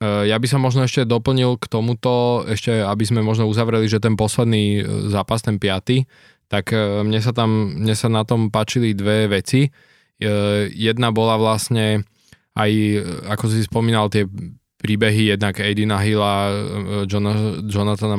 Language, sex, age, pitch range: Slovak, male, 20-39, 105-115 Hz